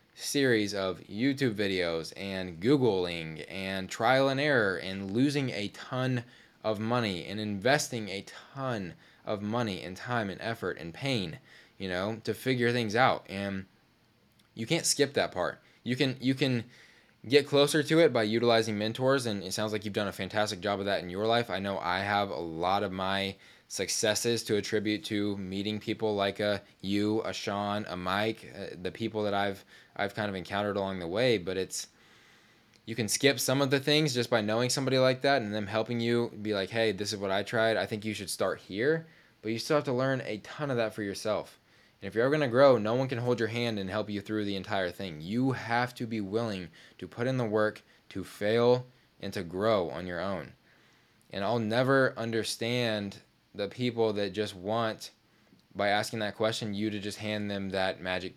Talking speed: 205 wpm